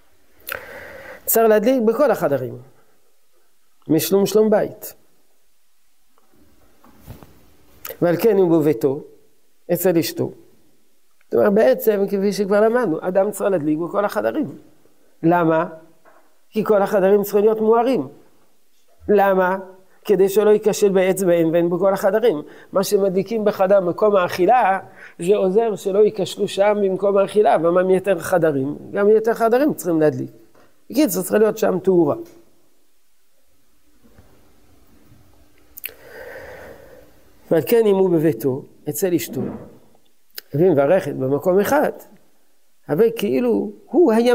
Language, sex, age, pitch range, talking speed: Hebrew, male, 50-69, 180-260 Hz, 100 wpm